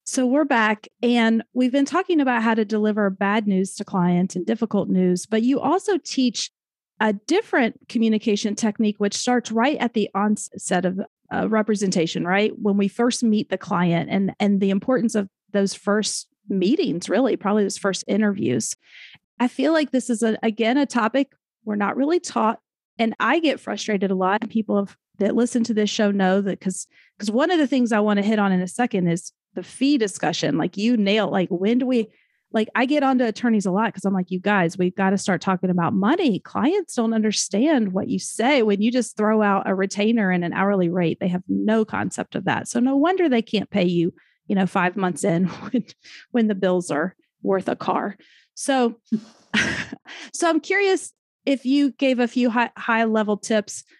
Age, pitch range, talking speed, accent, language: 30-49, 195-240 Hz, 205 wpm, American, English